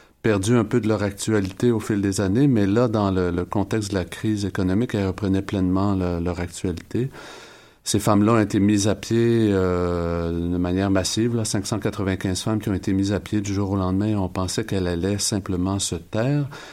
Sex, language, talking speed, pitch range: male, French, 205 wpm, 95-115 Hz